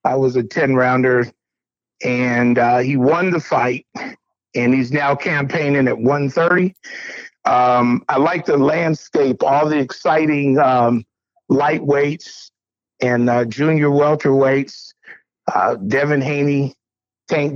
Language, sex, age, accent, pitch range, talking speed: English, male, 50-69, American, 125-150 Hz, 120 wpm